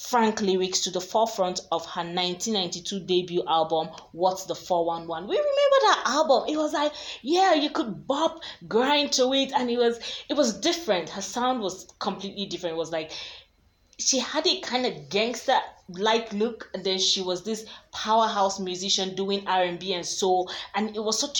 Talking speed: 190 wpm